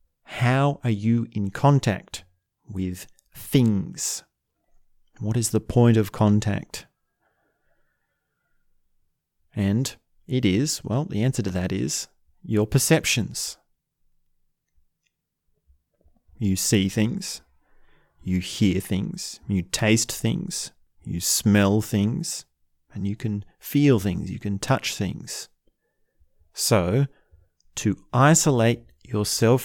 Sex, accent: male, Australian